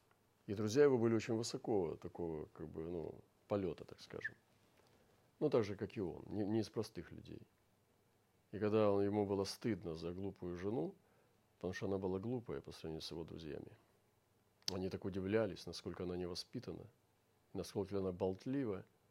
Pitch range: 95-115 Hz